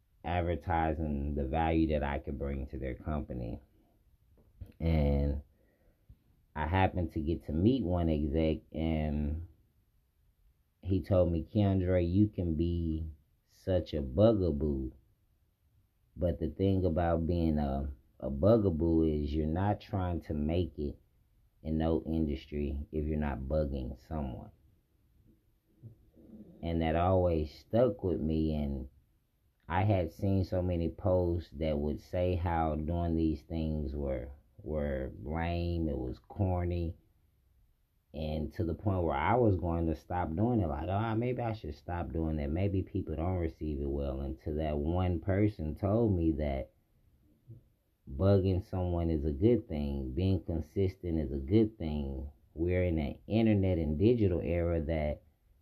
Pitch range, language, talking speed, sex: 75-95 Hz, English, 140 wpm, male